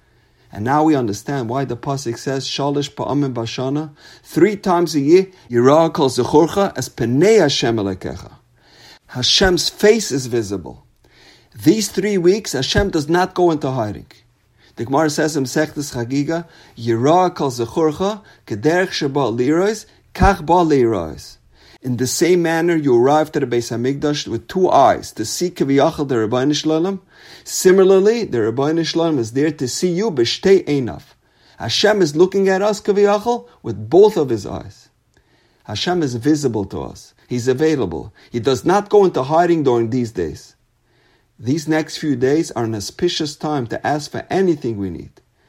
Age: 50-69